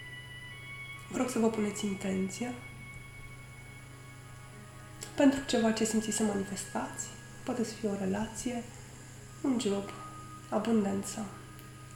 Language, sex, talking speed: Romanian, female, 95 wpm